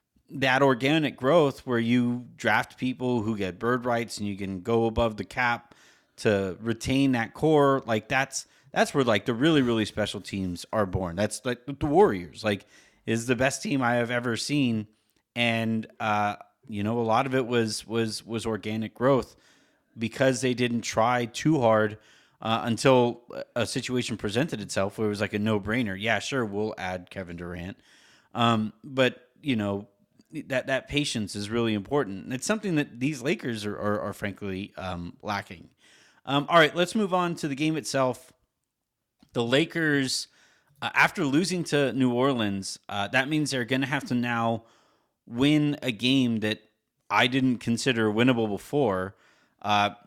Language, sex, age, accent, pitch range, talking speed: English, male, 30-49, American, 110-135 Hz, 170 wpm